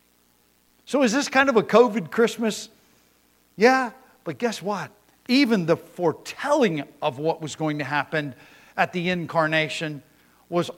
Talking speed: 140 wpm